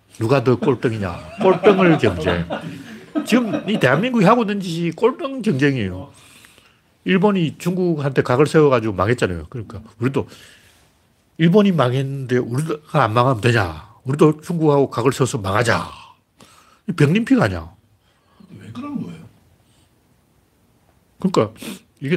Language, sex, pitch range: Korean, male, 110-160 Hz